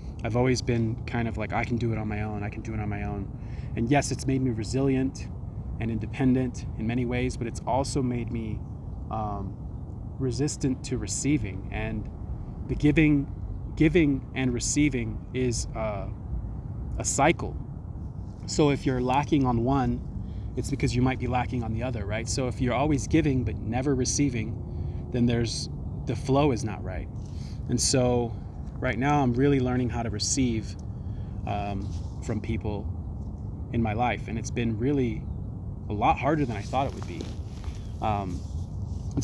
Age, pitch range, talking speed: 20-39, 105-130 Hz, 170 wpm